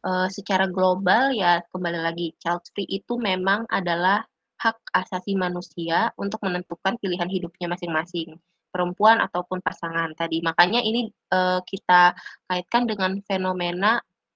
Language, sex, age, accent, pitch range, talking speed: Indonesian, female, 20-39, native, 180-205 Hz, 125 wpm